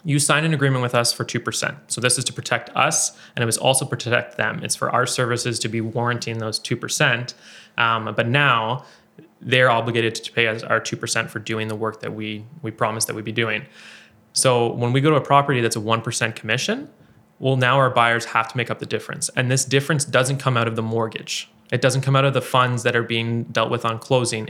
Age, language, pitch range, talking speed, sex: 20-39, English, 115-130 Hz, 235 wpm, male